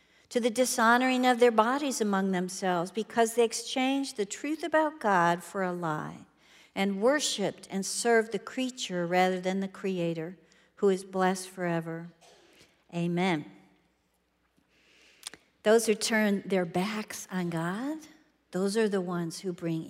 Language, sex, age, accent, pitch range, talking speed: English, female, 50-69, American, 180-235 Hz, 140 wpm